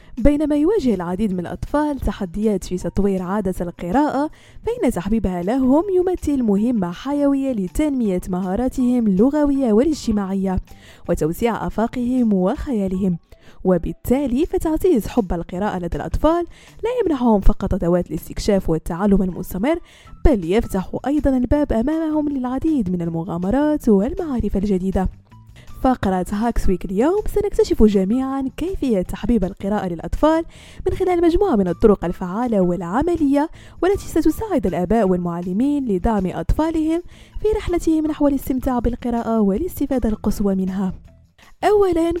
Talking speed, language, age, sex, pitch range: 110 wpm, French, 20-39, female, 190-295 Hz